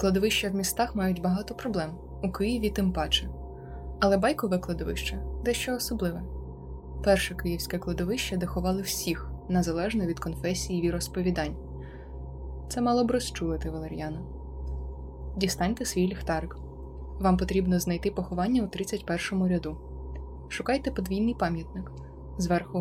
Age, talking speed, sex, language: 20-39, 120 wpm, female, Ukrainian